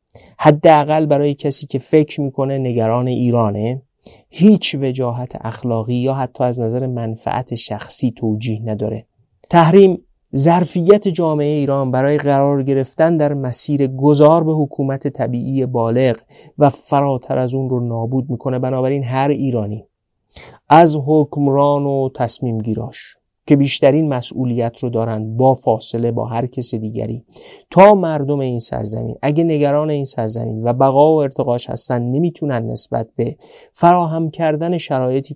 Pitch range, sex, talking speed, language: 115-140 Hz, male, 130 wpm, Persian